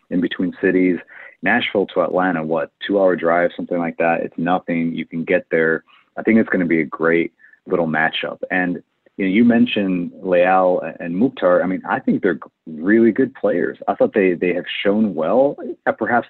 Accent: American